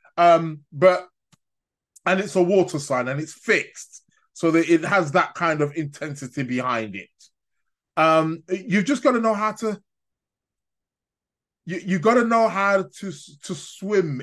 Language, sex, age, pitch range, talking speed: English, male, 20-39, 145-185 Hz, 155 wpm